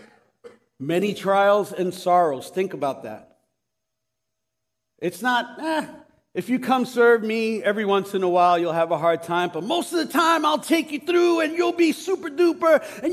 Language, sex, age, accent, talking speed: English, male, 50-69, American, 185 wpm